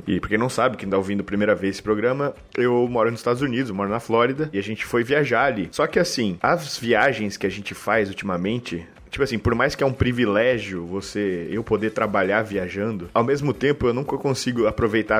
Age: 20-39